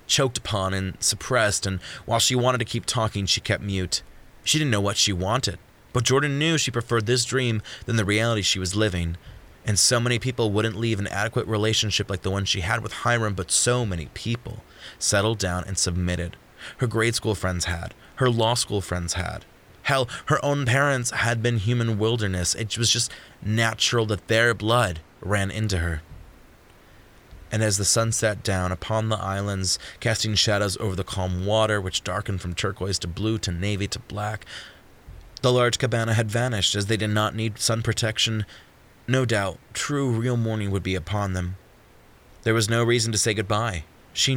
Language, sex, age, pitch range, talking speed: English, male, 20-39, 95-115 Hz, 190 wpm